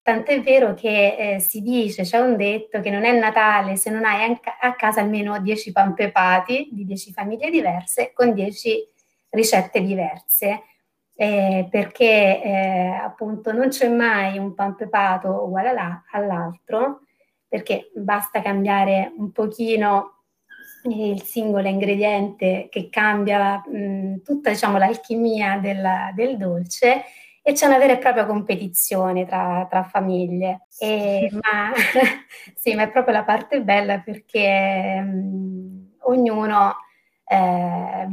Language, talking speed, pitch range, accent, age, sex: Italian, 125 wpm, 195-230 Hz, native, 30-49, female